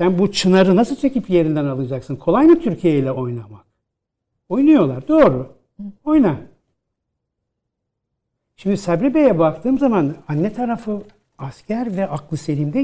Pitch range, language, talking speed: 145-210 Hz, Turkish, 110 wpm